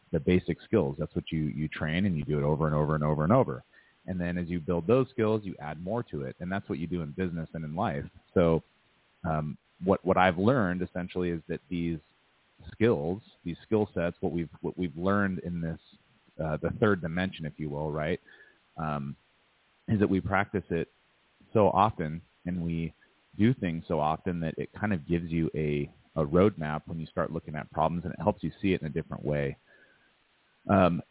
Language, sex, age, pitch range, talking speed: English, male, 30-49, 80-95 Hz, 210 wpm